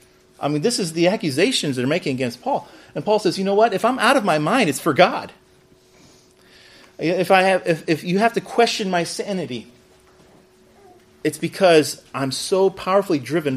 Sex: male